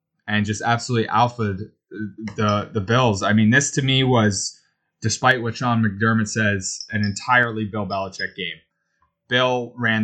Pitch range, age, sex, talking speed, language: 105-130 Hz, 20-39, male, 150 wpm, English